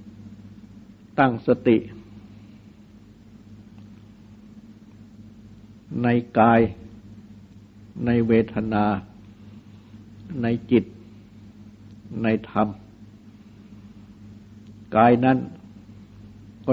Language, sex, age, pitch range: Thai, male, 60-79, 105-115 Hz